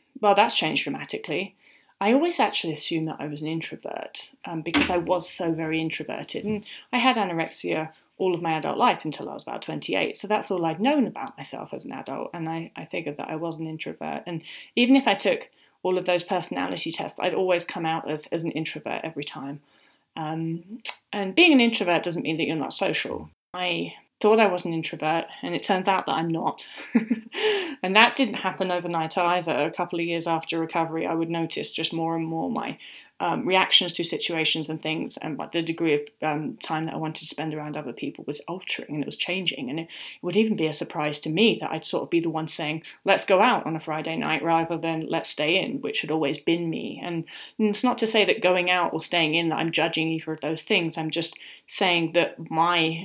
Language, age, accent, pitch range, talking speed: English, 30-49, British, 160-185 Hz, 225 wpm